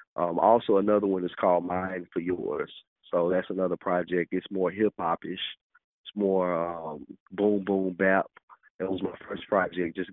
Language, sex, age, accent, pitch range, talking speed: English, male, 30-49, American, 90-95 Hz, 180 wpm